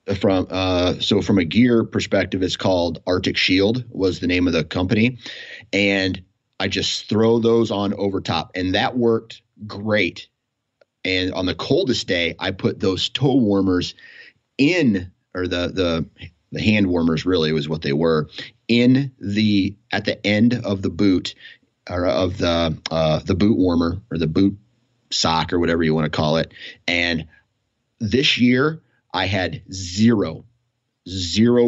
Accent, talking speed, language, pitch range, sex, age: American, 160 wpm, English, 85-110 Hz, male, 30-49